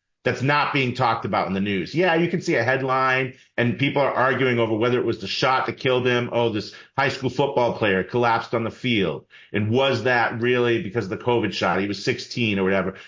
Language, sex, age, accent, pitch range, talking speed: English, male, 40-59, American, 115-135 Hz, 235 wpm